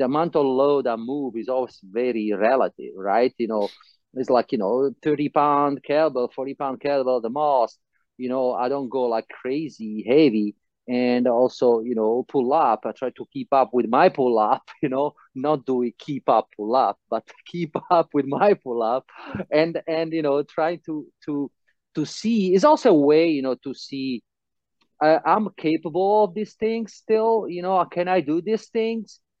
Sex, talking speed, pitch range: male, 195 wpm, 125-170 Hz